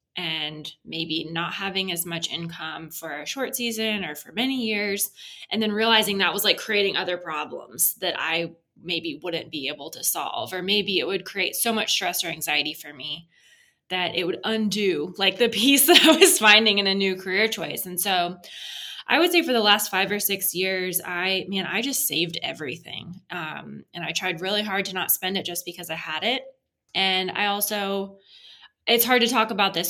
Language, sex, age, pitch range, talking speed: English, female, 20-39, 170-220 Hz, 205 wpm